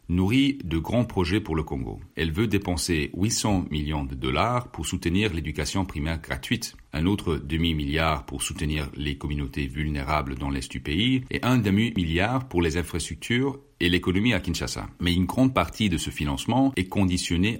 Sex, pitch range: male, 80-105 Hz